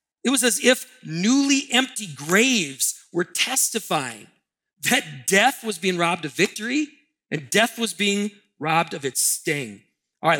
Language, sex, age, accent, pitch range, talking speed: English, male, 40-59, American, 140-205 Hz, 150 wpm